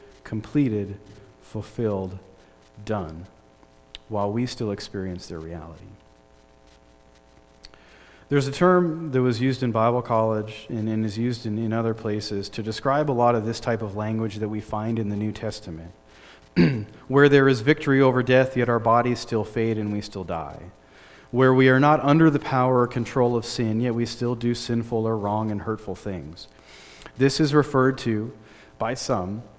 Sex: male